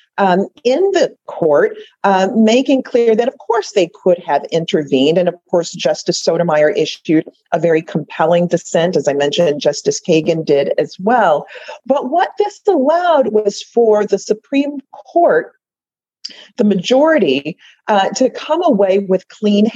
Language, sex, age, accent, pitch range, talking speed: English, female, 40-59, American, 175-265 Hz, 150 wpm